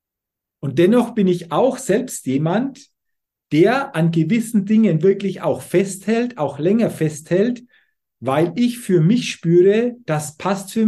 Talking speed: 140 wpm